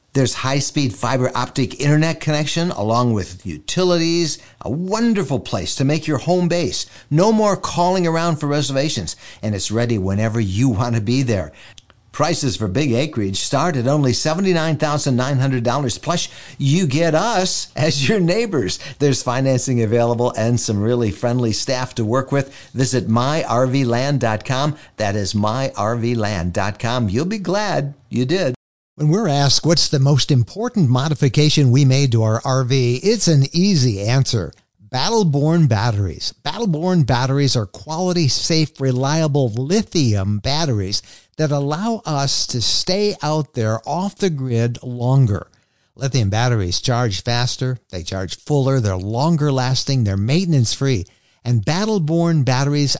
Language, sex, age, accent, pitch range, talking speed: English, male, 50-69, American, 115-155 Hz, 140 wpm